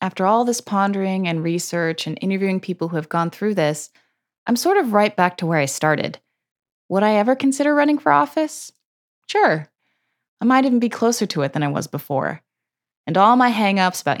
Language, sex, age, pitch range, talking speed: English, female, 20-39, 155-230 Hz, 200 wpm